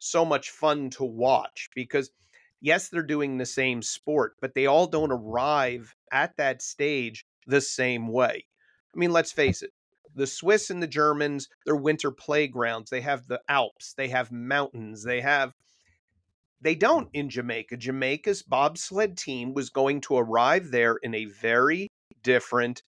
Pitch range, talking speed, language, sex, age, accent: 120-150 Hz, 160 wpm, English, male, 40-59, American